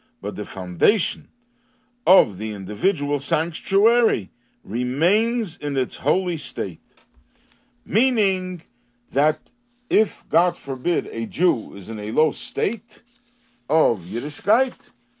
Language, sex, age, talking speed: English, male, 50-69, 105 wpm